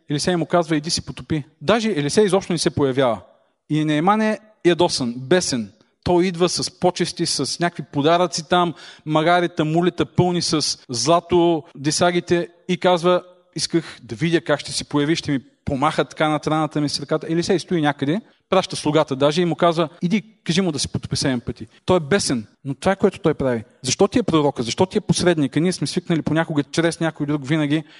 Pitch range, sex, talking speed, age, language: 150-185 Hz, male, 195 wpm, 40-59, Bulgarian